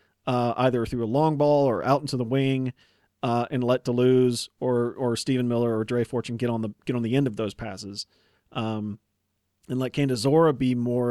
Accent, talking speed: American, 205 wpm